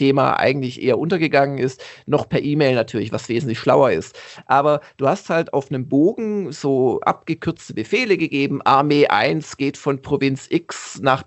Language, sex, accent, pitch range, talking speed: German, male, German, 135-170 Hz, 165 wpm